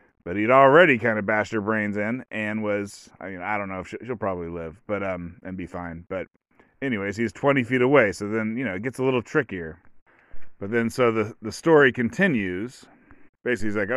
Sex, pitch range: male, 105-130 Hz